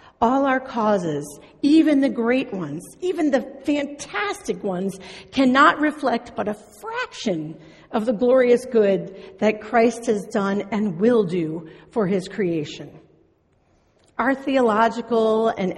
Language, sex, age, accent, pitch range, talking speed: English, female, 50-69, American, 185-250 Hz, 125 wpm